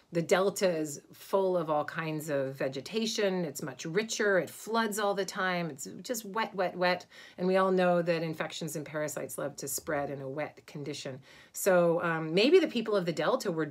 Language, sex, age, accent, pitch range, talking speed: English, female, 40-59, American, 165-205 Hz, 200 wpm